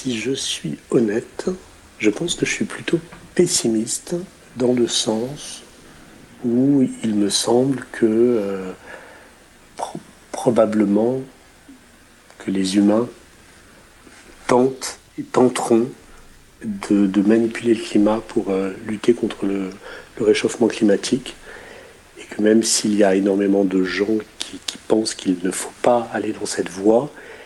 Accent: French